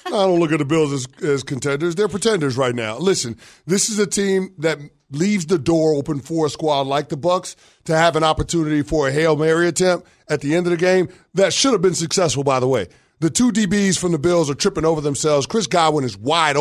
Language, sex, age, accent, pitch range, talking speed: English, male, 30-49, American, 145-190 Hz, 240 wpm